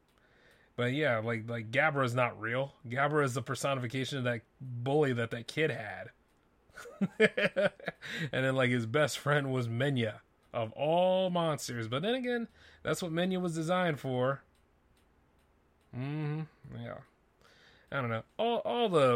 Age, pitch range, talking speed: 30-49, 115-150 Hz, 145 wpm